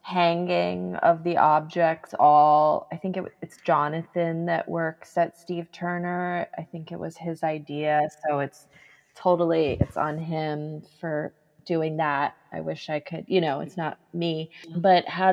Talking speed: 155 wpm